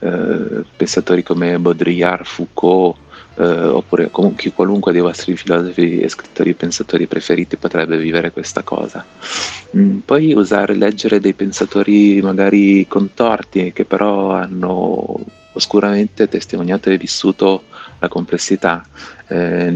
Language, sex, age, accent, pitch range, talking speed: Italian, male, 40-59, native, 85-100 Hz, 110 wpm